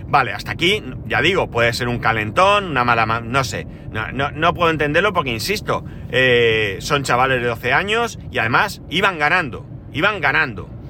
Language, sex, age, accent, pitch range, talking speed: Spanish, male, 40-59, Spanish, 120-155 Hz, 180 wpm